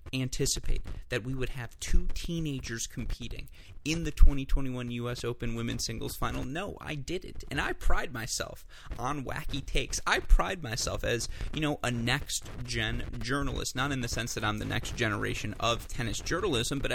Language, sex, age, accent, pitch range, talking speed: English, male, 30-49, American, 110-140 Hz, 170 wpm